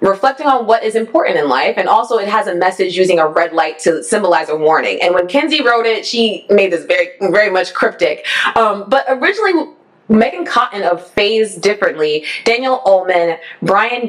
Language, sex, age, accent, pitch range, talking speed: English, female, 20-39, American, 180-275 Hz, 185 wpm